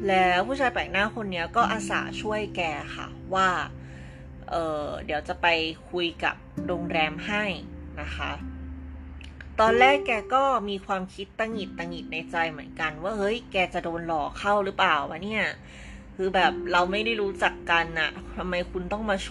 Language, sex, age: Thai, female, 20-39